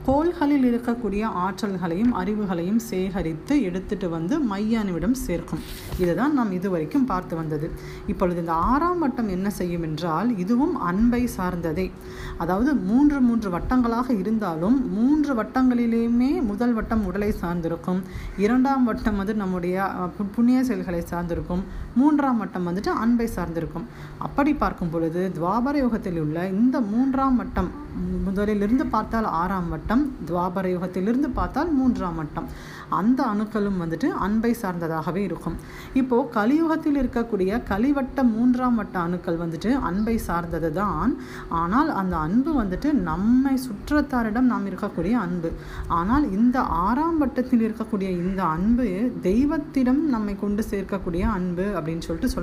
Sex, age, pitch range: female, 30-49, 180-250 Hz